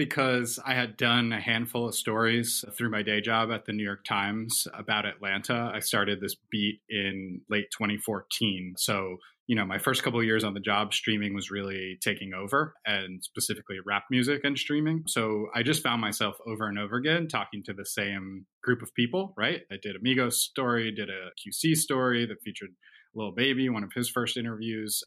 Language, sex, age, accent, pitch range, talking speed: English, male, 20-39, American, 105-130 Hz, 200 wpm